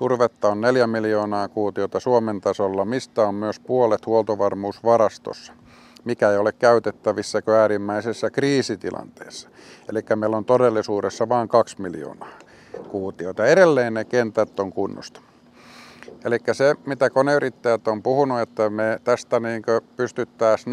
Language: Finnish